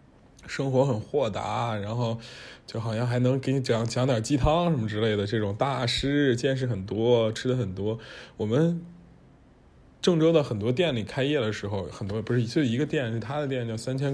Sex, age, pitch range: male, 20-39, 105-135 Hz